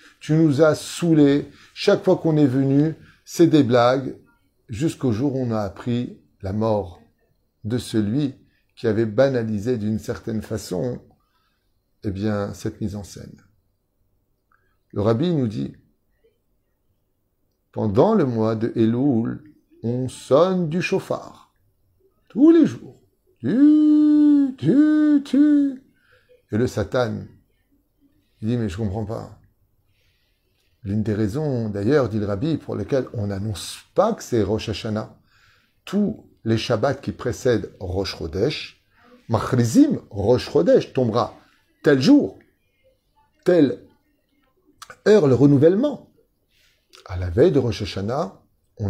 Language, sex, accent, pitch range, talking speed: French, male, French, 100-160 Hz, 125 wpm